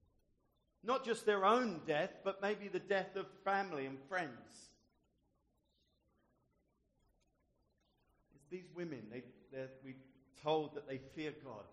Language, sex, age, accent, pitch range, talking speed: English, male, 50-69, British, 110-155 Hz, 120 wpm